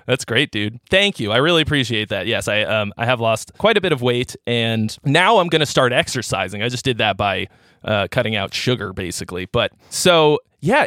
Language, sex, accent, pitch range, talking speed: English, male, American, 115-145 Hz, 220 wpm